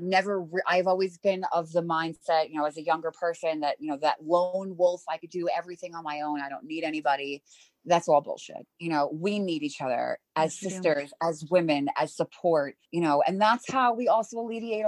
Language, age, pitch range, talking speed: English, 20-39, 160-195 Hz, 215 wpm